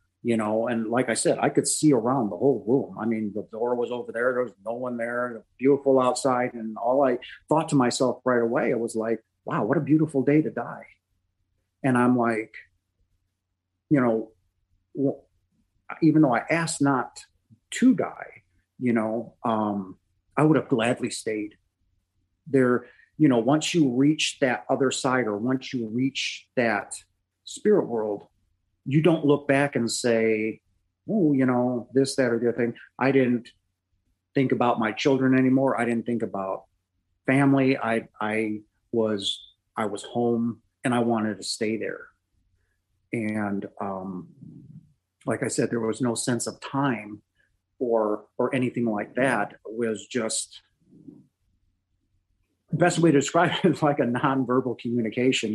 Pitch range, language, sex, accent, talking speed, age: 100-130 Hz, English, male, American, 160 wpm, 40-59